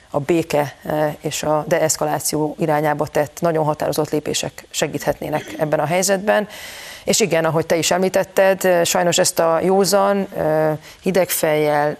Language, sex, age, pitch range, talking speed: Hungarian, female, 30-49, 150-180 Hz, 125 wpm